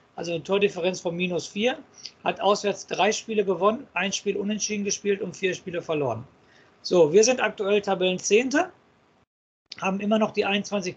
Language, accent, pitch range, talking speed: German, German, 180-220 Hz, 165 wpm